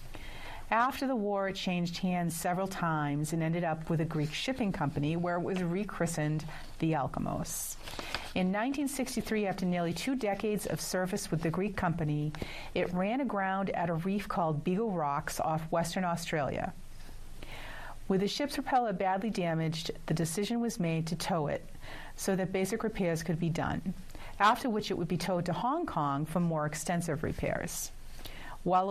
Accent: American